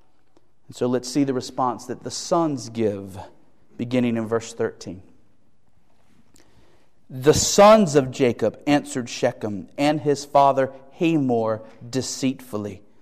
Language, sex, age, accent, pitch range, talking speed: English, male, 40-59, American, 125-185 Hz, 110 wpm